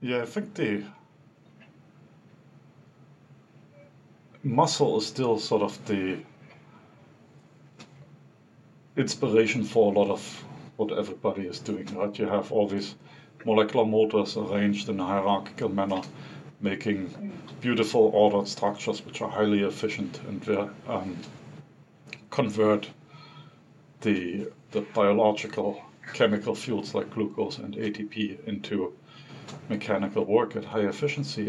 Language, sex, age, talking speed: English, male, 50-69, 110 wpm